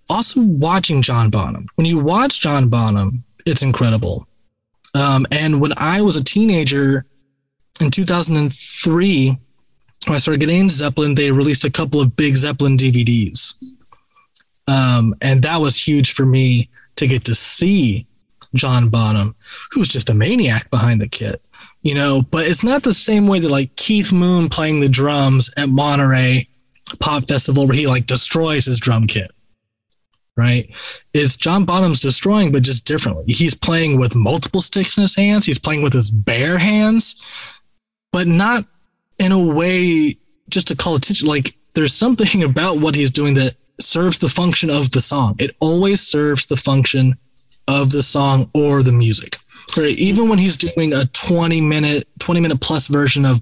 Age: 20-39